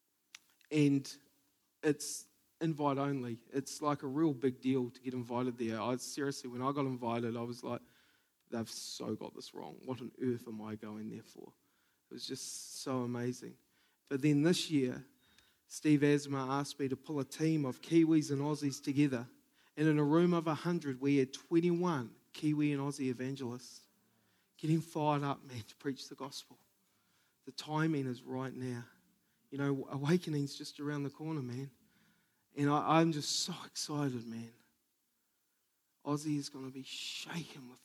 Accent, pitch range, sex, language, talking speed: Australian, 130-155 Hz, male, English, 170 wpm